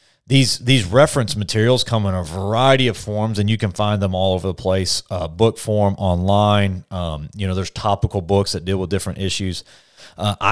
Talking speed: 200 wpm